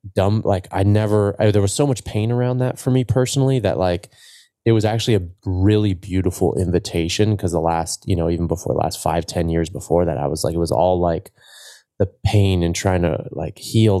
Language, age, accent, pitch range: English, 20-39, American, 85-105 Hz